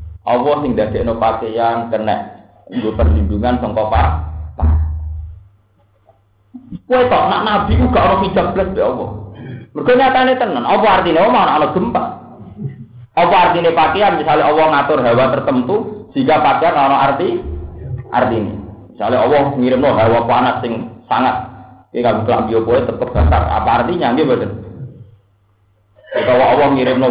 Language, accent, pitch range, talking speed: Indonesian, native, 100-150 Hz, 125 wpm